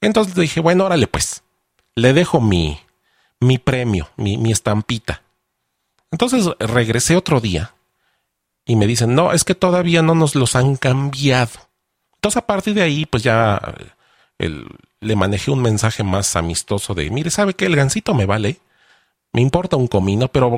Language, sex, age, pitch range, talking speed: Spanish, male, 40-59, 95-150 Hz, 165 wpm